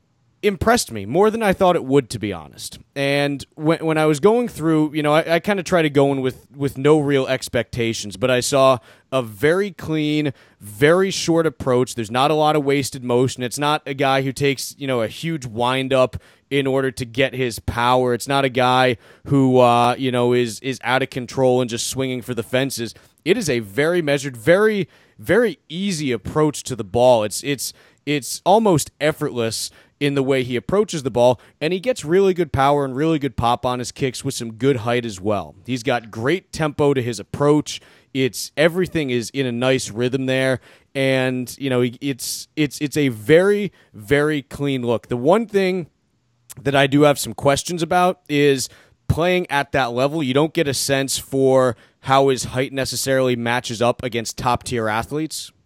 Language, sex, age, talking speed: English, male, 30-49, 200 wpm